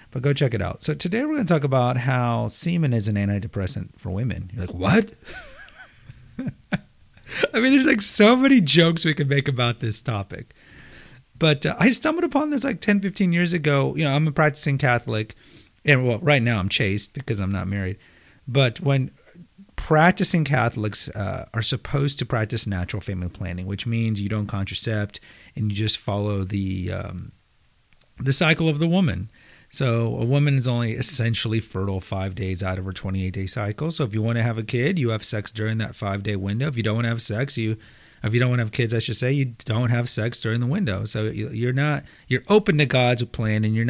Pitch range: 105-150 Hz